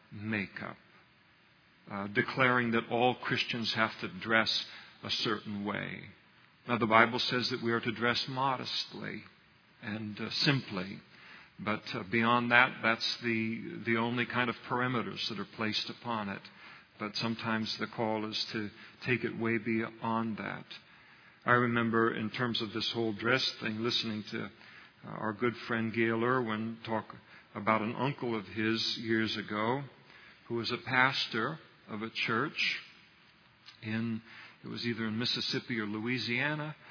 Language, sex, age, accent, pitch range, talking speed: English, male, 50-69, American, 110-130 Hz, 150 wpm